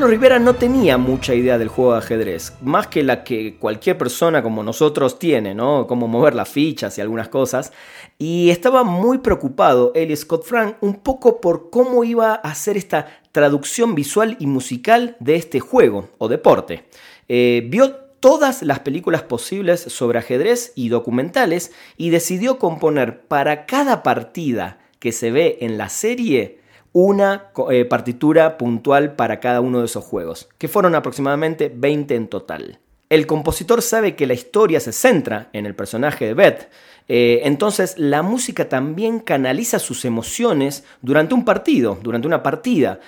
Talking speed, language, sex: 160 wpm, Spanish, male